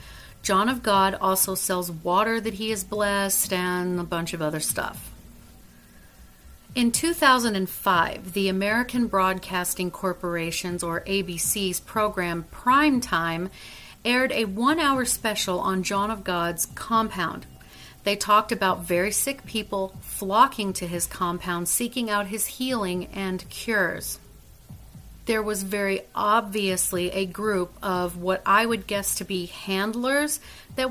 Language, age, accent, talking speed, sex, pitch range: English, 40-59, American, 130 wpm, female, 180-225 Hz